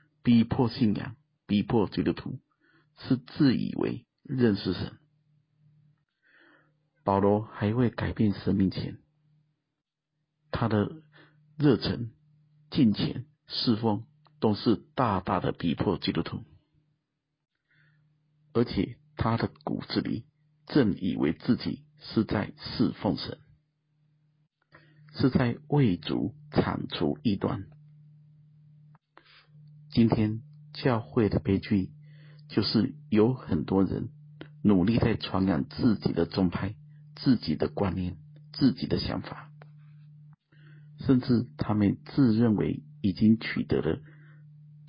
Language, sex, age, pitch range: Chinese, male, 50-69, 110-150 Hz